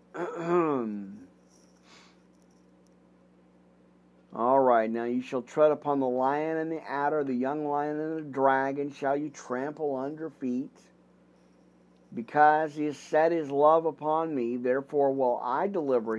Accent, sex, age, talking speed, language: American, male, 50-69, 130 wpm, English